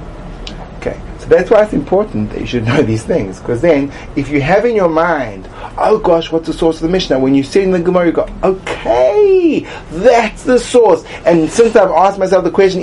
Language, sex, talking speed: English, male, 210 wpm